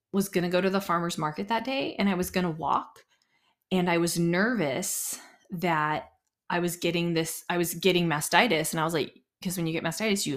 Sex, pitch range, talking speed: female, 155-185 Hz, 220 wpm